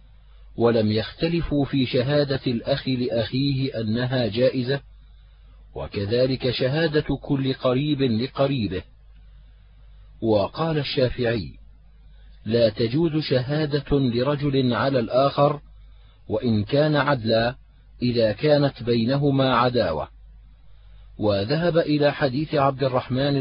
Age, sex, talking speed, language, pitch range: 40-59, male, 85 wpm, Arabic, 115-140 Hz